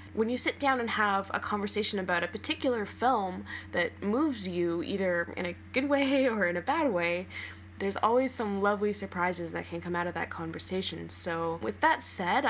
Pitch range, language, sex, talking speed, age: 175-235 Hz, English, female, 195 wpm, 10-29